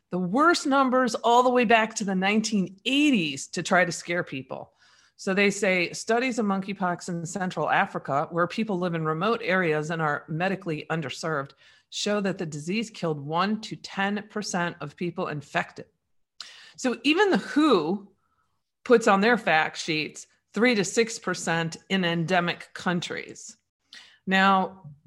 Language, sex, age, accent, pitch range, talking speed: English, female, 40-59, American, 165-215 Hz, 145 wpm